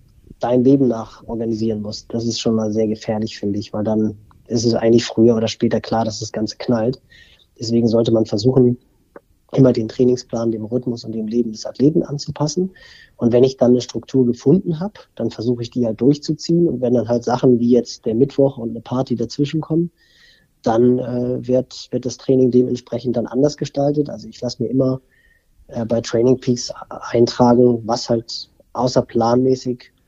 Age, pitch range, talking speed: 30-49, 115-130 Hz, 185 wpm